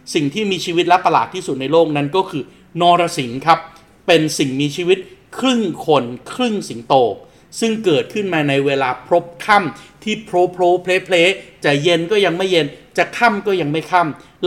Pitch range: 145-185 Hz